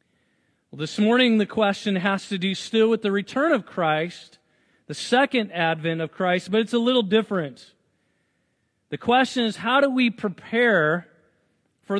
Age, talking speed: 40-59, 155 wpm